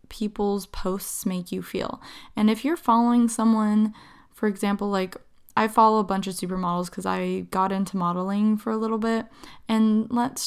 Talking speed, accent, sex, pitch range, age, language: 170 wpm, American, female, 190-230 Hz, 10-29, English